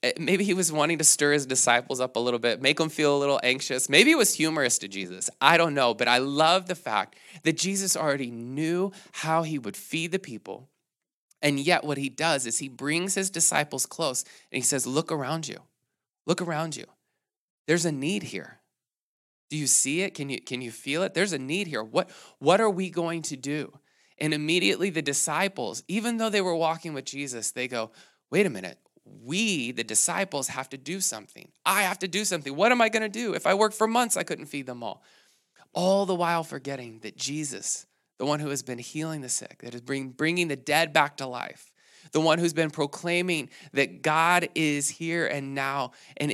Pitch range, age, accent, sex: 140-180 Hz, 20-39, American, male